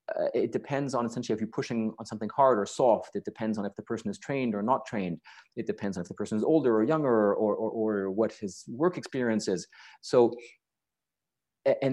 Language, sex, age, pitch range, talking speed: English, male, 30-49, 110-155 Hz, 215 wpm